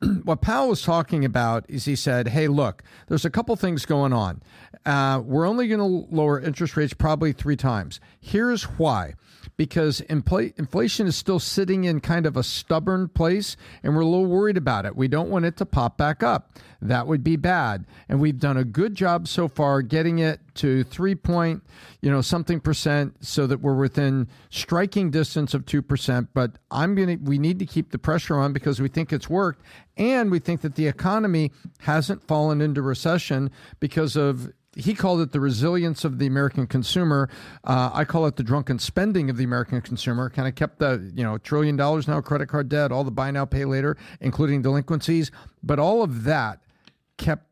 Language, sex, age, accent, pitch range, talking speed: English, male, 50-69, American, 135-170 Hz, 200 wpm